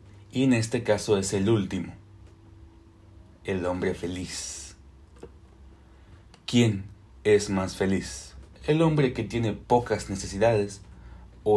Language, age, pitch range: Spanish, 30-49, 95-110 Hz